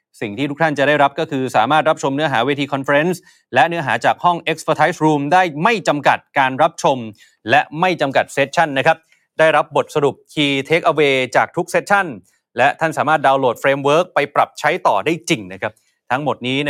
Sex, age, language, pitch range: male, 20-39, Thai, 130-165 Hz